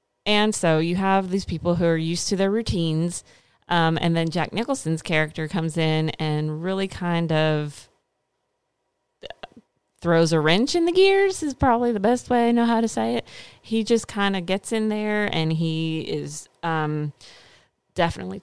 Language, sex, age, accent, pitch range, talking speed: English, female, 30-49, American, 155-180 Hz, 175 wpm